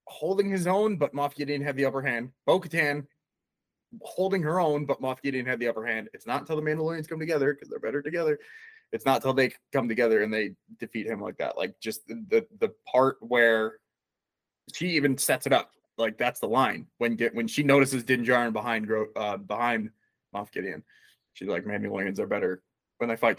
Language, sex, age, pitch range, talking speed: English, male, 20-39, 115-150 Hz, 205 wpm